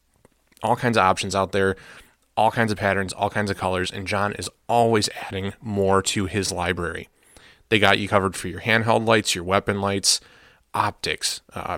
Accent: American